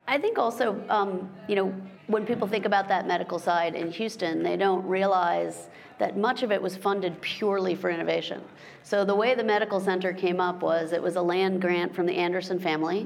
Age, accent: 40-59, American